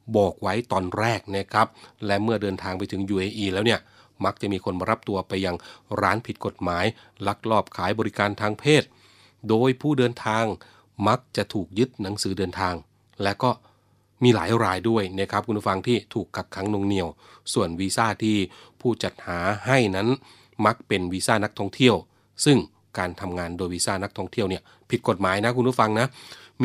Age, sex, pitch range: 30-49, male, 95-115 Hz